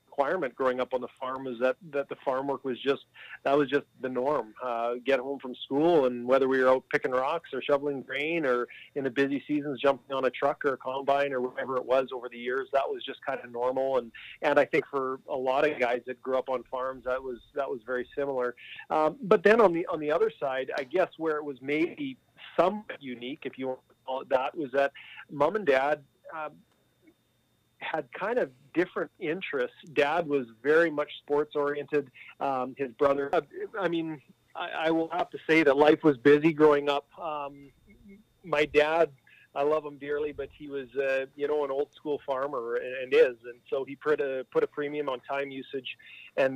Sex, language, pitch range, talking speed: male, English, 130-150 Hz, 220 wpm